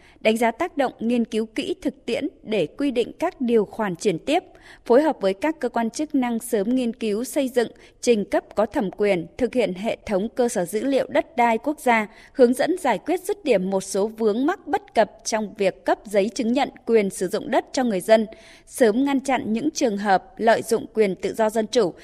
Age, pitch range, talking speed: 20-39, 210-265 Hz, 230 wpm